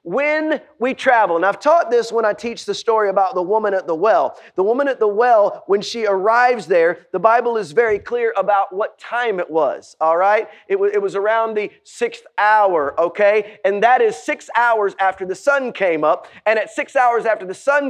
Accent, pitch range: American, 205-255 Hz